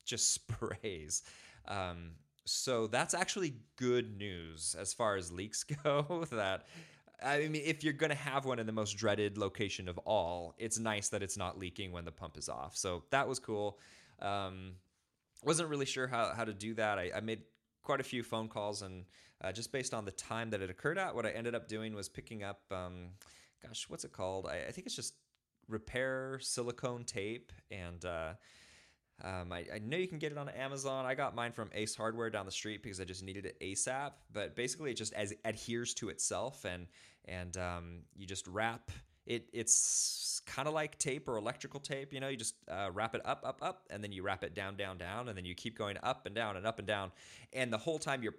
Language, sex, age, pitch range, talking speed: English, male, 20-39, 95-130 Hz, 220 wpm